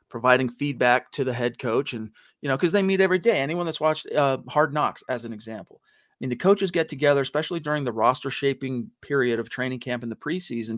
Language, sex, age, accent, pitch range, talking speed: English, male, 40-59, American, 125-160 Hz, 230 wpm